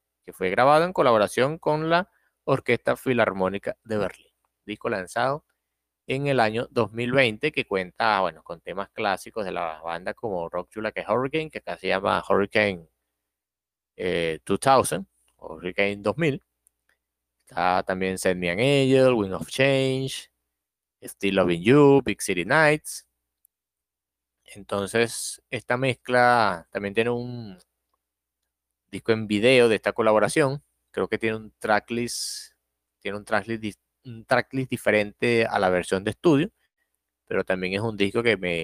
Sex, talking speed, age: male, 140 wpm, 30-49